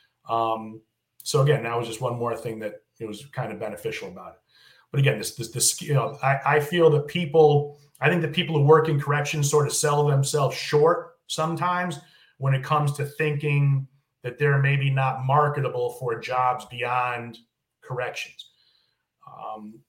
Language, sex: English, male